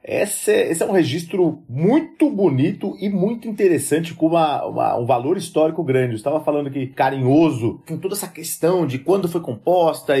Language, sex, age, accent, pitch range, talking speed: Portuguese, male, 30-49, Brazilian, 135-190 Hz, 165 wpm